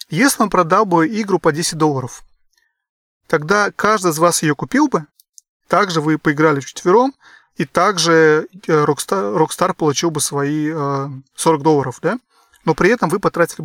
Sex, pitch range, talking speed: male, 155-210 Hz, 150 wpm